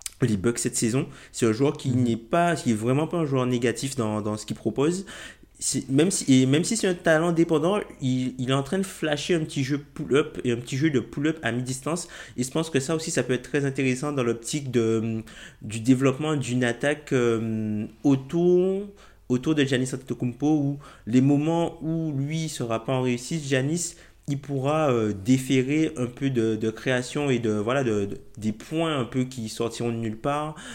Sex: male